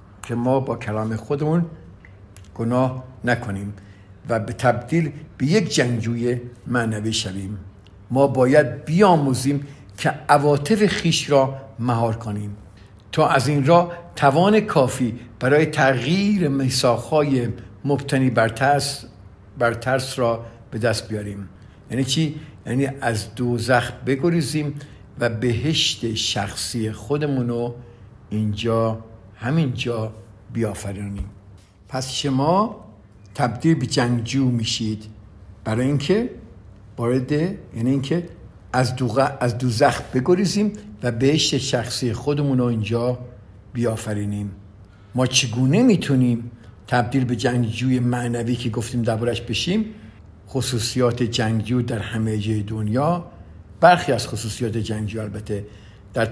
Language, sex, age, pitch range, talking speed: Persian, male, 50-69, 110-135 Hz, 105 wpm